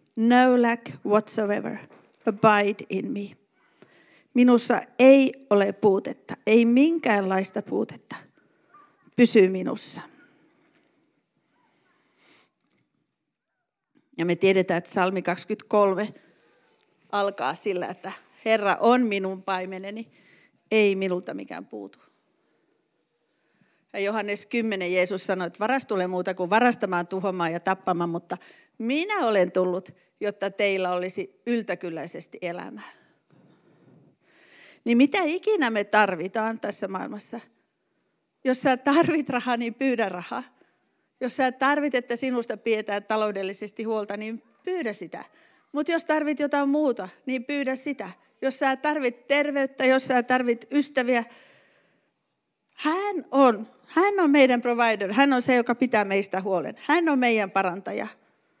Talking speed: 115 wpm